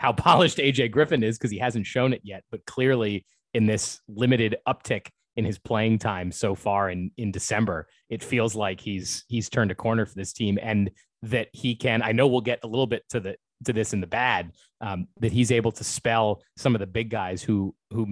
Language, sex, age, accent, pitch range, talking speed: English, male, 30-49, American, 105-125 Hz, 225 wpm